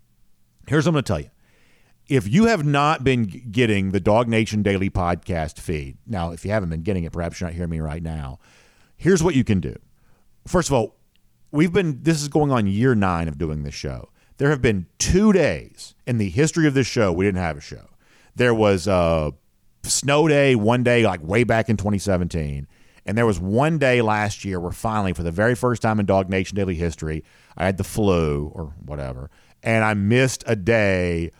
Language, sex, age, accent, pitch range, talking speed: English, male, 50-69, American, 85-125 Hz, 210 wpm